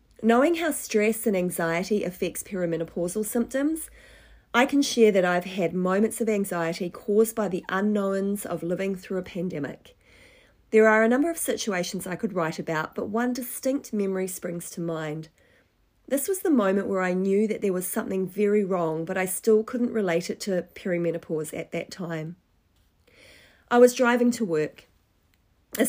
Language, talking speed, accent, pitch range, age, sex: English, 170 wpm, Australian, 175-225 Hz, 40-59, female